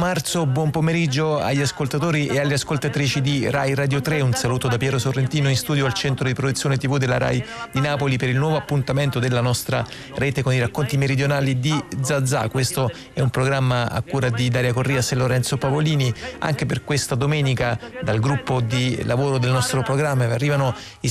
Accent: native